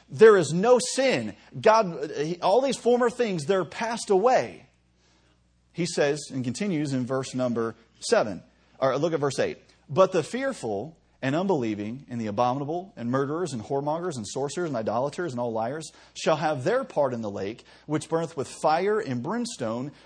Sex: male